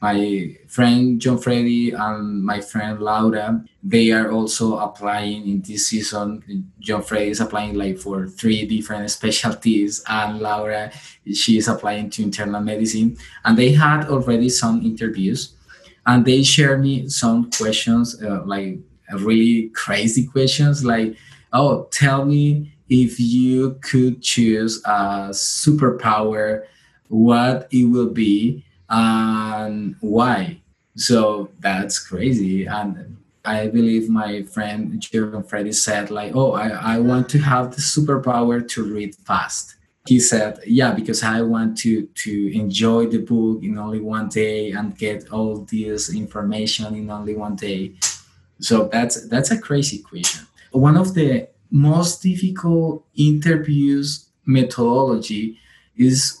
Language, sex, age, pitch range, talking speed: English, male, 20-39, 105-125 Hz, 135 wpm